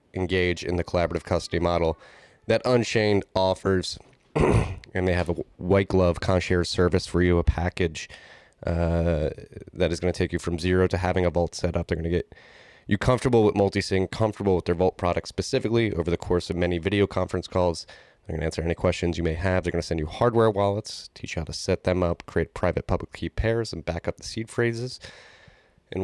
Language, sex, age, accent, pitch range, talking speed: English, male, 20-39, American, 85-95 Hz, 215 wpm